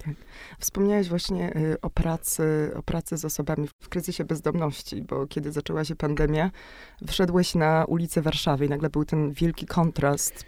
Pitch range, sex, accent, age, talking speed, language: 160-190 Hz, female, native, 20-39, 155 wpm, Polish